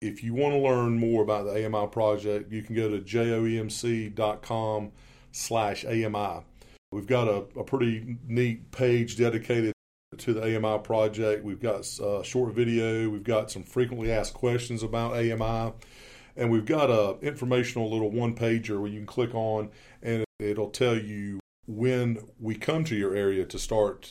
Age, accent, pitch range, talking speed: 40-59, American, 105-120 Hz, 165 wpm